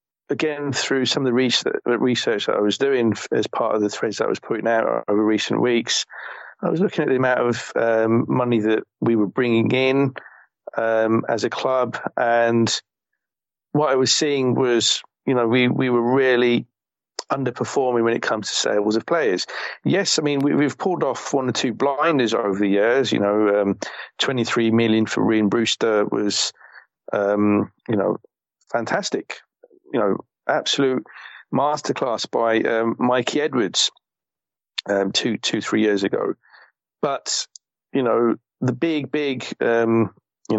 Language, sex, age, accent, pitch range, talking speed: English, male, 40-59, British, 110-130 Hz, 165 wpm